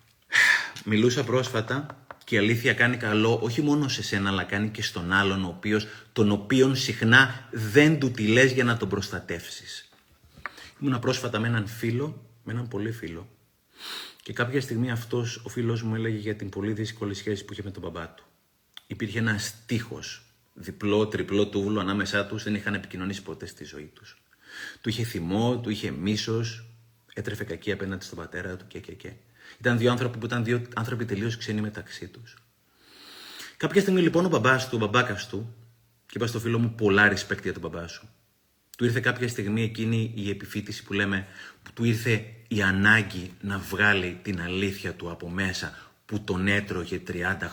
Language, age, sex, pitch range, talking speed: Greek, 30-49, male, 95-120 Hz, 175 wpm